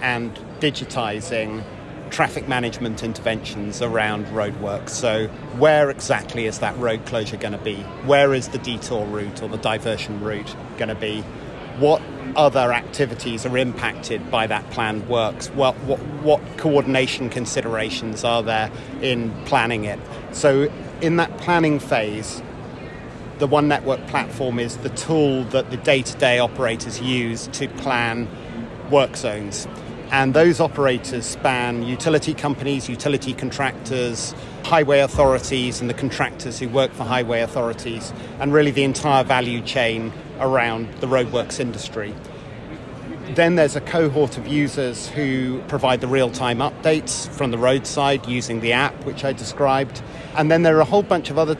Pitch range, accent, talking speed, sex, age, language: 115-140 Hz, British, 145 wpm, male, 30-49, English